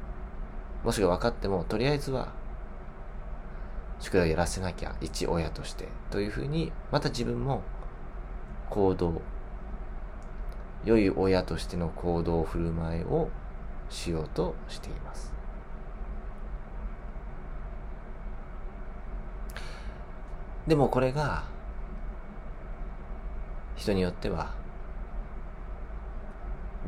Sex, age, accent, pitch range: male, 30-49, native, 75-95 Hz